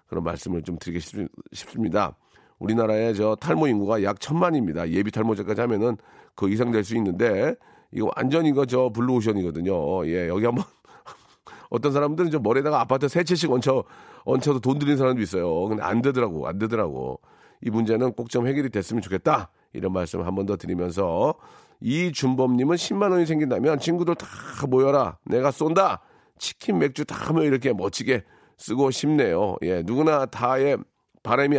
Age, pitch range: 40-59, 110-160 Hz